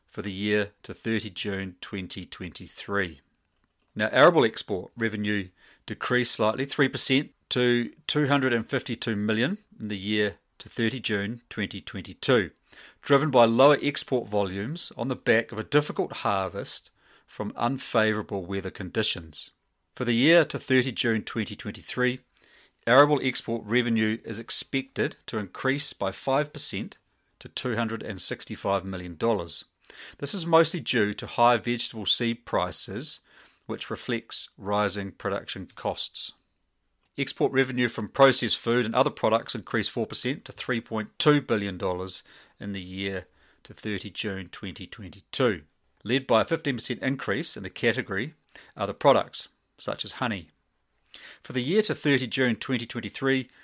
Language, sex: English, male